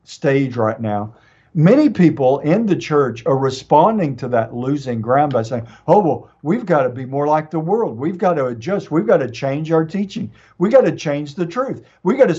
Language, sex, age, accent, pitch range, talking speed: English, male, 50-69, American, 125-180 Hz, 220 wpm